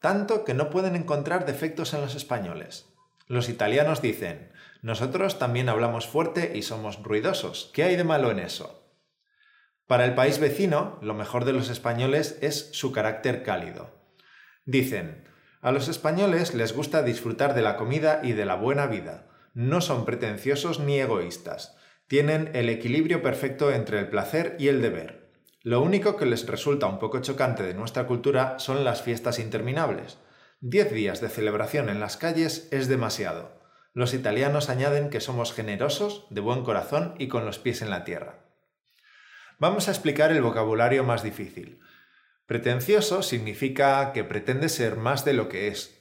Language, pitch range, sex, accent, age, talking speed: Spanish, 115-155 Hz, male, Spanish, 20-39, 165 wpm